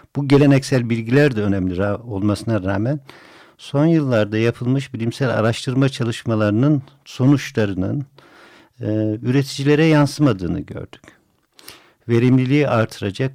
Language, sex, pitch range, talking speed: Turkish, male, 105-135 Hz, 95 wpm